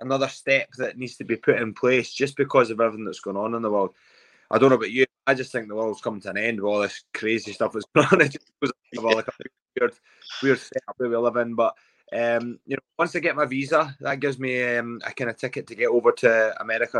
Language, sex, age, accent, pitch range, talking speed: English, male, 20-39, British, 110-135 Hz, 260 wpm